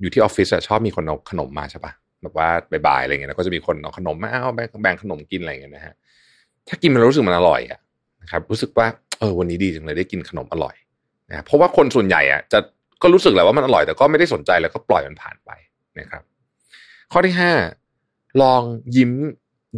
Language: Thai